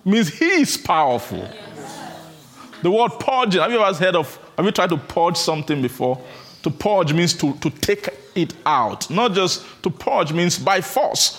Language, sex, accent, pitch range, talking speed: English, male, Nigerian, 135-190 Hz, 180 wpm